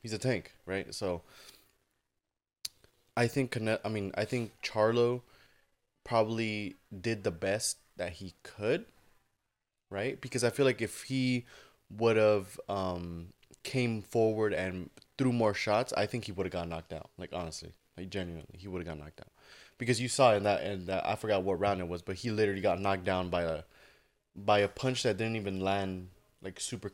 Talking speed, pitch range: 185 wpm, 95-125 Hz